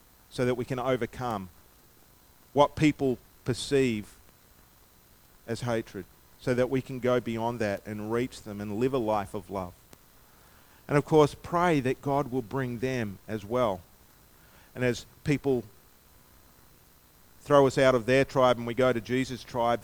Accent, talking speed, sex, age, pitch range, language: Australian, 155 wpm, male, 40-59, 120-155 Hz, English